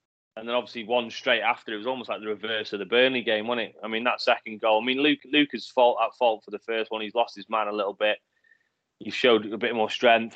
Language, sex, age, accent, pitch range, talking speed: English, male, 20-39, British, 105-120 Hz, 270 wpm